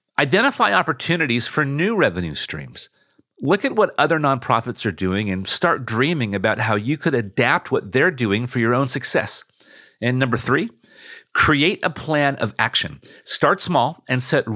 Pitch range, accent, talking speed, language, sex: 115-160 Hz, American, 165 wpm, English, male